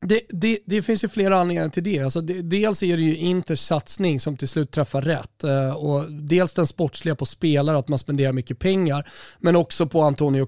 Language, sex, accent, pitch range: Swedish, male, native, 145-175 Hz